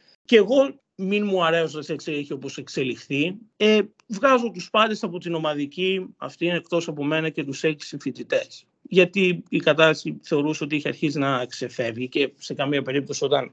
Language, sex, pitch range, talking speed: Greek, male, 125-165 Hz, 170 wpm